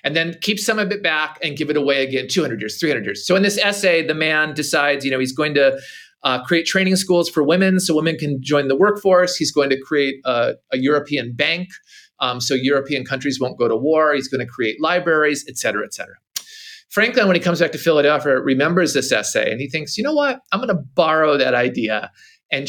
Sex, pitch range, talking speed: male, 135-185 Hz, 235 wpm